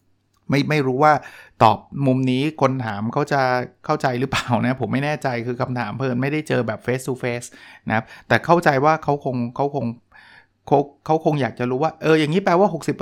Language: Thai